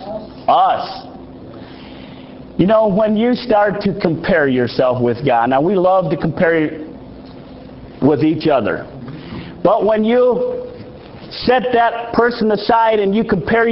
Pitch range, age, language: 160-230 Hz, 50-69, English